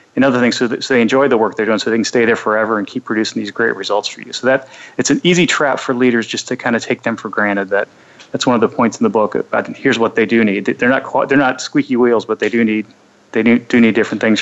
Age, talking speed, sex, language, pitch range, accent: 30-49, 300 wpm, male, English, 115-135 Hz, American